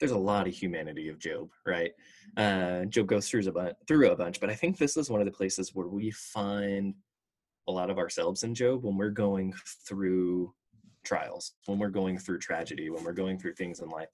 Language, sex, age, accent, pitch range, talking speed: English, male, 20-39, American, 95-115 Hz, 210 wpm